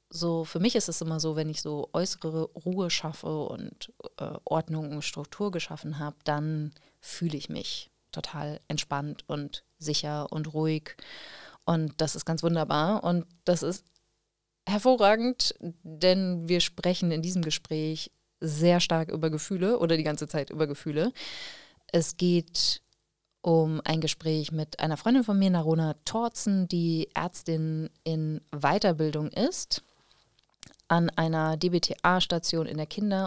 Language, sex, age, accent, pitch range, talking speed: German, female, 30-49, German, 155-185 Hz, 140 wpm